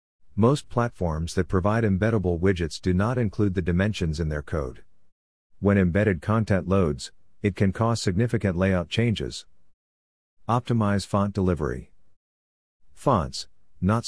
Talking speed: 125 wpm